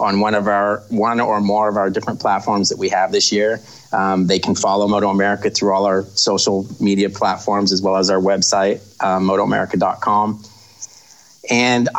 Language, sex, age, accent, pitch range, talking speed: English, male, 30-49, American, 95-105 Hz, 180 wpm